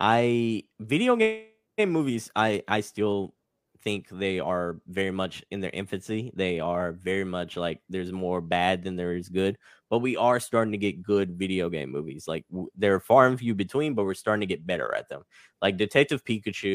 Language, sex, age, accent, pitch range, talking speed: English, male, 10-29, American, 90-105 Hz, 195 wpm